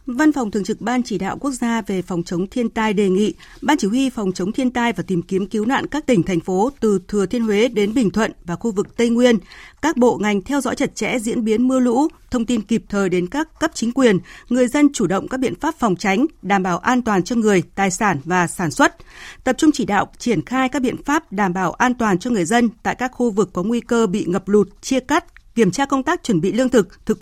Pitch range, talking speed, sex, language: 200-265 Hz, 265 wpm, female, Vietnamese